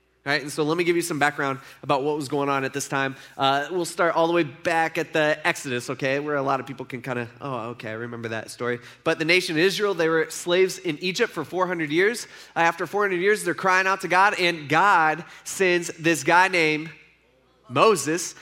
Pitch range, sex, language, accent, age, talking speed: 145-185 Hz, male, English, American, 20-39, 230 wpm